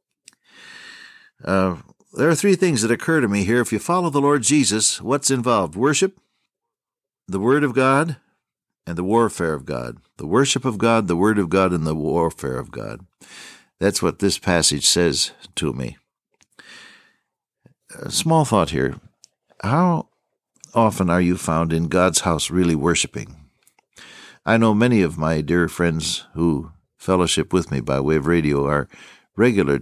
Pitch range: 85-130 Hz